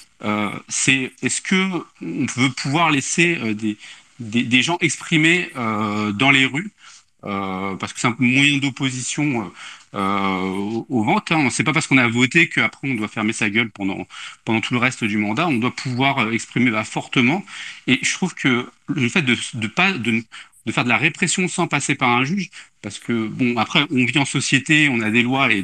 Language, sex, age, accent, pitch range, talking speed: French, male, 40-59, French, 115-155 Hz, 205 wpm